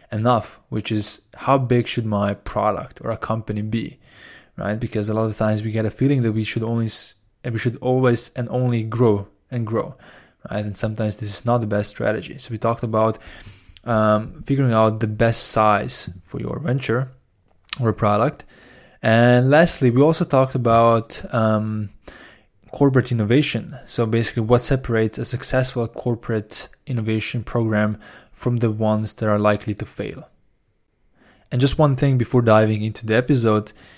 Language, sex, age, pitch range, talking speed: English, male, 20-39, 105-120 Hz, 165 wpm